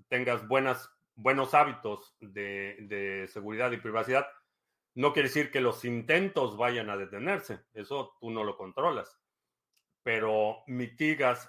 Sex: male